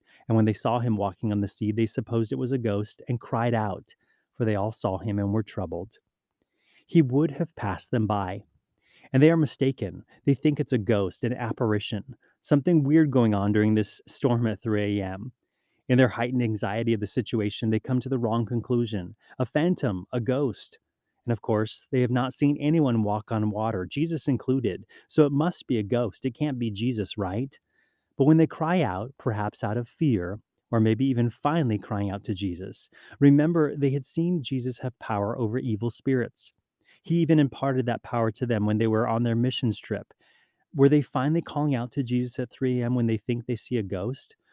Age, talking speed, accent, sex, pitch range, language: 30-49, 205 wpm, American, male, 110-145 Hz, English